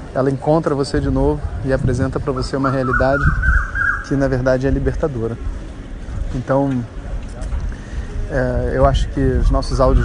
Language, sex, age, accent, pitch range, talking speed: Portuguese, male, 20-39, Brazilian, 80-130 Hz, 135 wpm